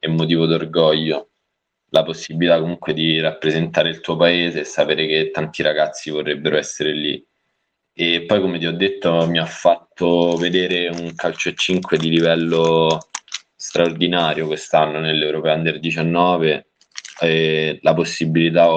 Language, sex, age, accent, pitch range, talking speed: Italian, male, 20-39, native, 80-90 Hz, 135 wpm